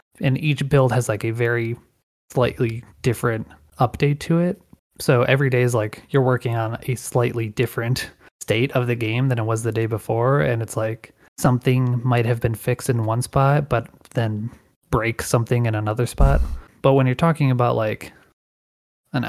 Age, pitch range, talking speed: 20-39, 110-130 Hz, 180 wpm